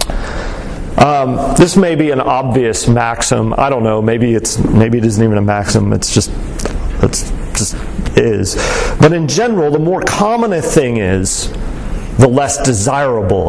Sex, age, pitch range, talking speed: male, 40-59, 110-150 Hz, 160 wpm